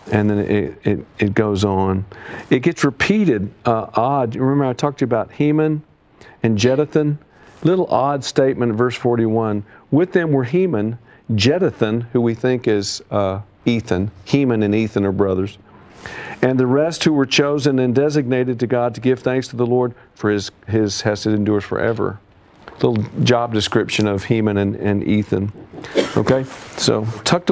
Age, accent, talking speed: 50-69, American, 170 wpm